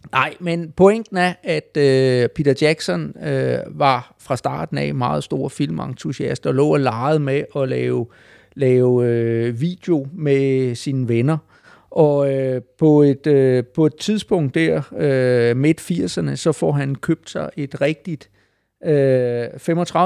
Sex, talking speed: male, 145 wpm